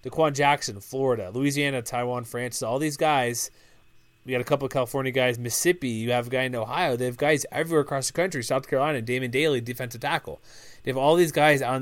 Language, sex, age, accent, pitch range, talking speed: English, male, 20-39, American, 120-145 Hz, 220 wpm